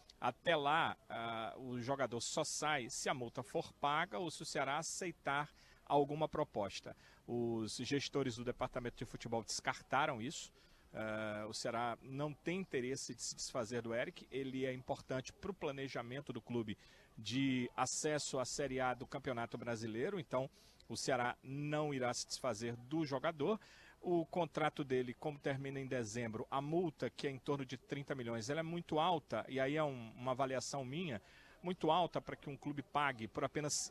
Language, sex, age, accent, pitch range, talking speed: Portuguese, male, 40-59, Brazilian, 125-160 Hz, 170 wpm